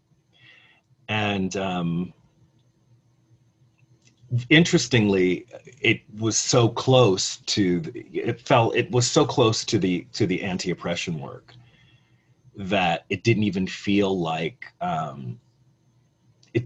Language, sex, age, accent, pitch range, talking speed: English, male, 40-59, American, 95-125 Hz, 105 wpm